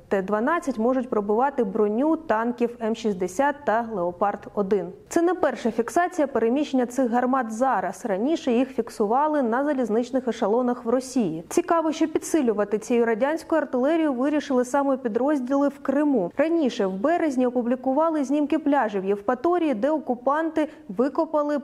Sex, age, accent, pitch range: female, 30-49, native, 225-290 Hz